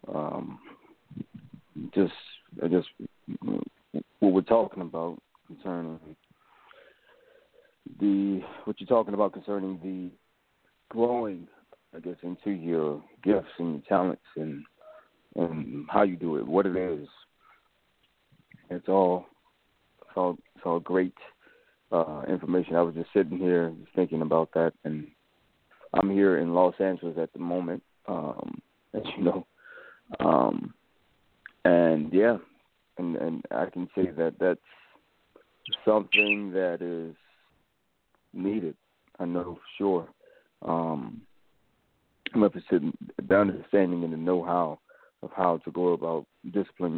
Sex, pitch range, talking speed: male, 85-95 Hz, 125 wpm